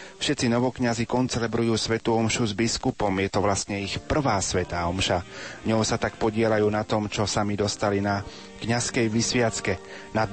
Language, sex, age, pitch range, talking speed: Slovak, male, 30-49, 100-115 Hz, 155 wpm